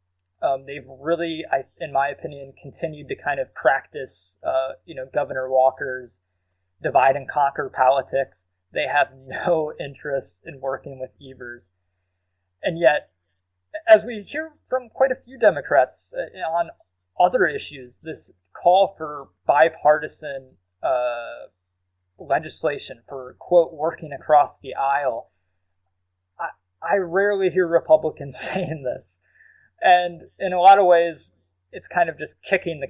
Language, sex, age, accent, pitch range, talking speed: English, male, 20-39, American, 105-165 Hz, 135 wpm